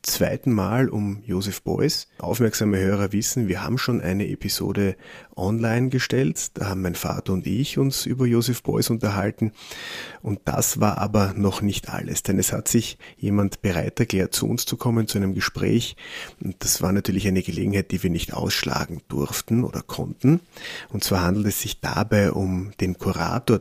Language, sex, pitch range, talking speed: German, male, 95-115 Hz, 175 wpm